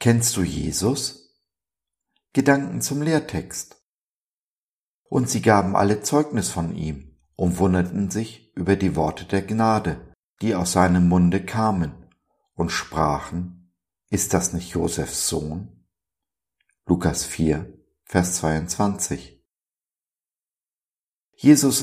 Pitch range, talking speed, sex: 85-105 Hz, 105 wpm, male